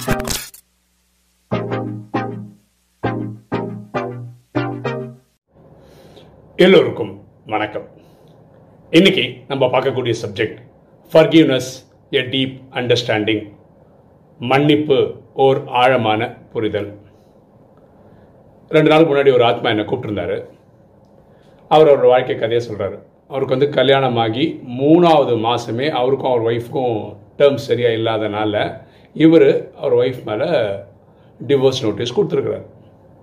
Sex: male